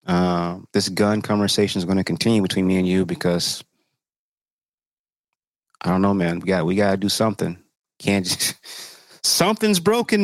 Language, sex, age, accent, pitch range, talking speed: English, male, 30-49, American, 100-140 Hz, 165 wpm